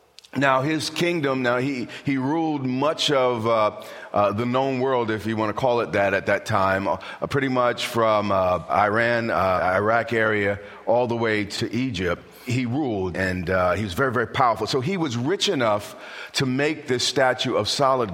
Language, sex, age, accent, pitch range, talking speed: English, male, 40-59, American, 110-145 Hz, 190 wpm